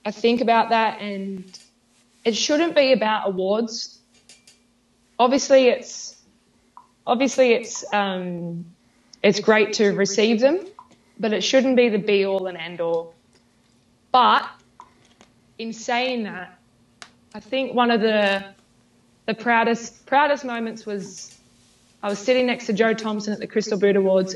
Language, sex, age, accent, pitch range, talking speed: English, female, 20-39, Australian, 190-230 Hz, 140 wpm